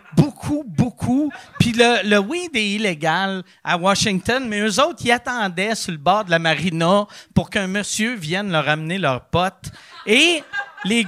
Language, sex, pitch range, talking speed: French, male, 165-245 Hz, 175 wpm